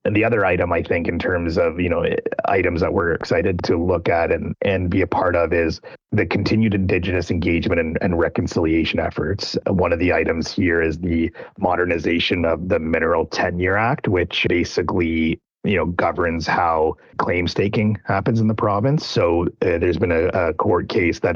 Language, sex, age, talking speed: English, male, 30-49, 185 wpm